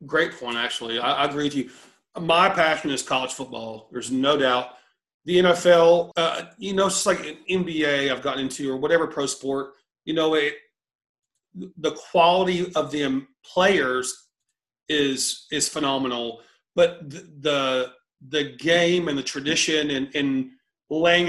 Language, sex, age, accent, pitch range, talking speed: English, male, 40-59, American, 135-170 Hz, 150 wpm